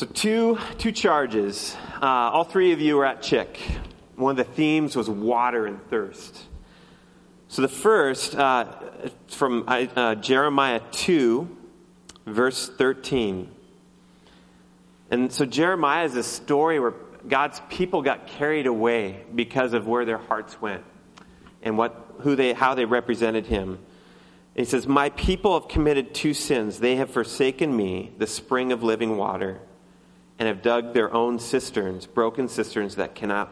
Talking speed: 150 wpm